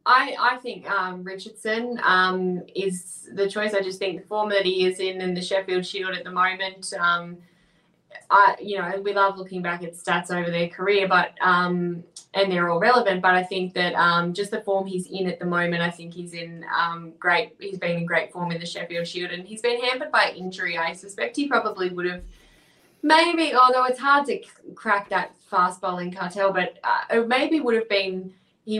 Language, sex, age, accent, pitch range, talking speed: English, female, 20-39, Australian, 180-205 Hz, 215 wpm